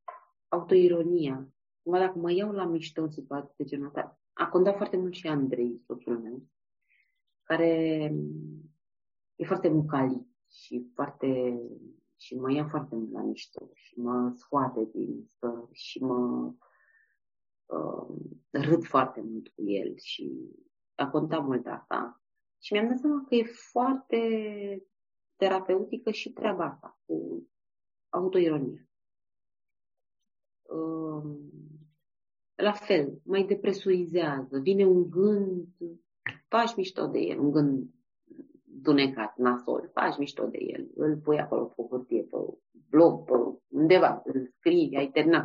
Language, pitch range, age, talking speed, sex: Romanian, 120-185 Hz, 30-49, 125 wpm, female